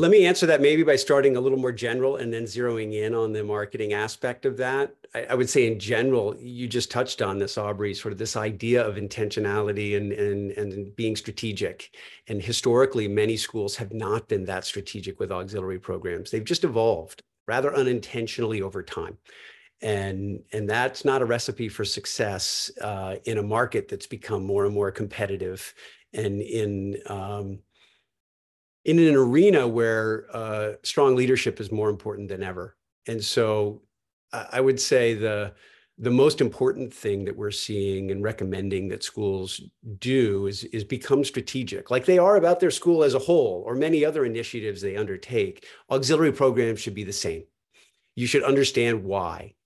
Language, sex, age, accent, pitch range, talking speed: English, male, 50-69, American, 100-125 Hz, 175 wpm